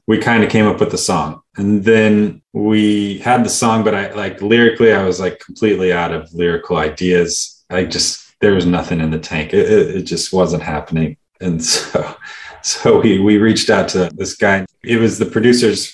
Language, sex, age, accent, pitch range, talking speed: English, male, 30-49, American, 85-105 Hz, 200 wpm